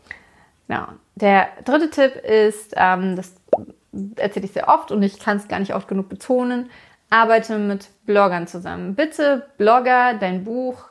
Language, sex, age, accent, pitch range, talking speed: German, female, 30-49, German, 195-245 Hz, 150 wpm